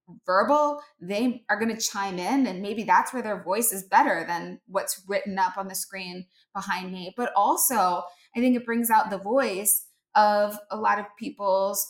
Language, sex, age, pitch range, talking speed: English, female, 20-39, 195-230 Hz, 190 wpm